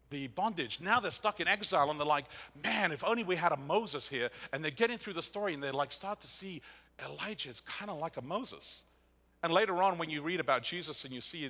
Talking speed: 250 wpm